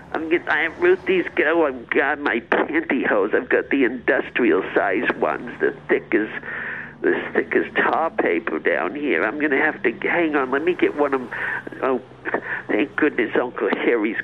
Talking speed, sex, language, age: 185 wpm, male, English, 50-69